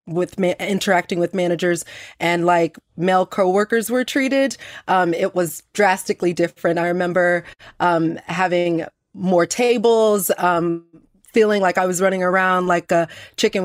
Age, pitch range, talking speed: 30-49, 170-190 Hz, 135 wpm